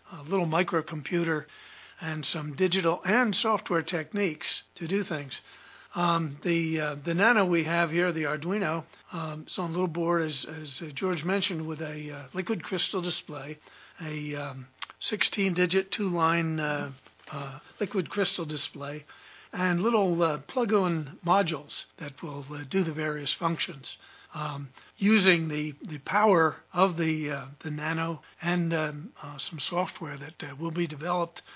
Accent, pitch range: American, 155-180 Hz